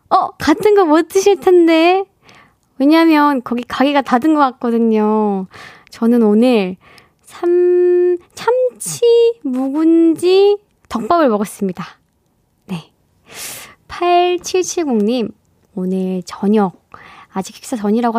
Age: 20-39